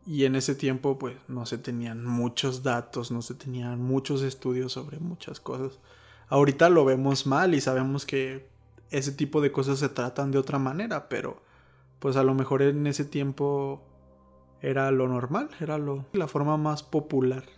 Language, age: Spanish, 20-39